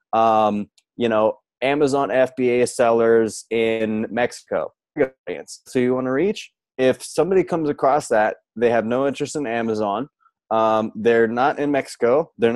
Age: 20-39